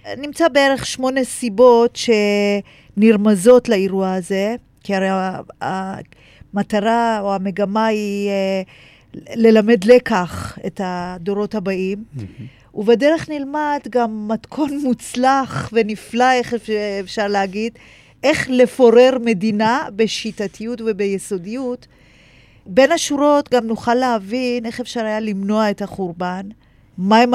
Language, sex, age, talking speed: Hebrew, female, 40-59, 95 wpm